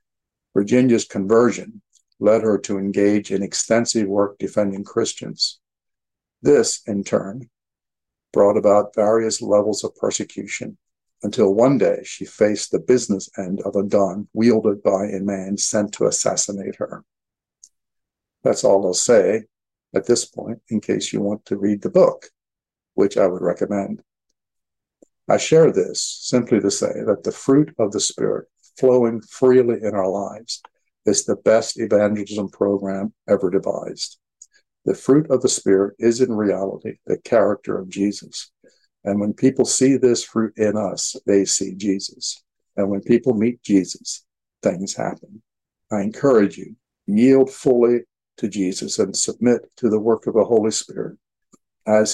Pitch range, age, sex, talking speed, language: 100-120 Hz, 60-79, male, 150 wpm, English